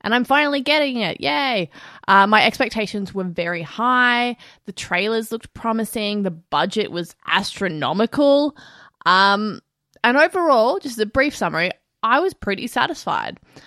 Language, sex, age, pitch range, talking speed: English, female, 20-39, 175-220 Hz, 140 wpm